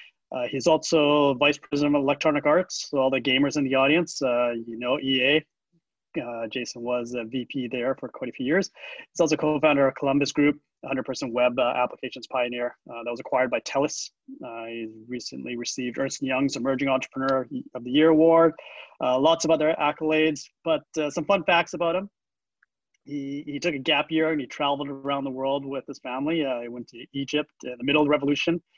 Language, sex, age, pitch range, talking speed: English, male, 30-49, 130-155 Hz, 200 wpm